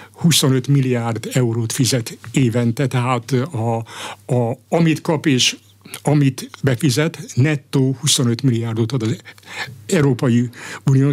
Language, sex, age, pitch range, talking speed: Hungarian, male, 60-79, 120-150 Hz, 115 wpm